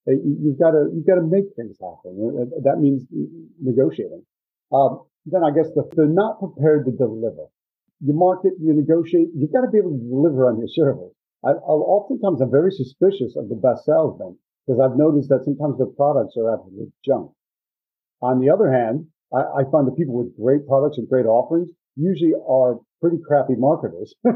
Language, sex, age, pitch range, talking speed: English, male, 50-69, 130-170 Hz, 180 wpm